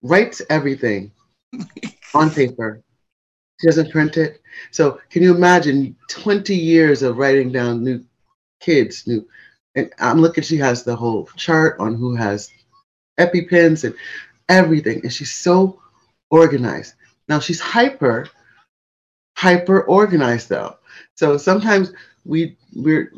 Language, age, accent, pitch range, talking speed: English, 30-49, American, 115-160 Hz, 125 wpm